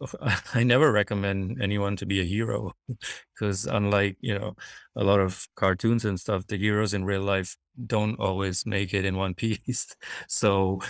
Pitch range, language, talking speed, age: 95-110 Hz, English, 170 wpm, 20-39